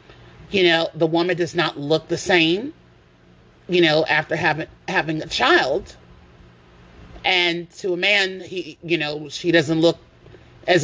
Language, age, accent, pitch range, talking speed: English, 30-49, American, 115-185 Hz, 150 wpm